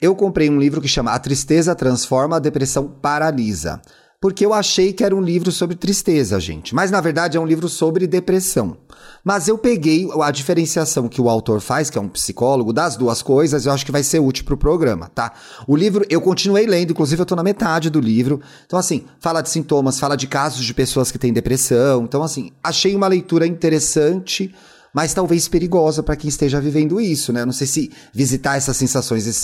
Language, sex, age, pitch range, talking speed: Portuguese, male, 30-49, 130-180 Hz, 210 wpm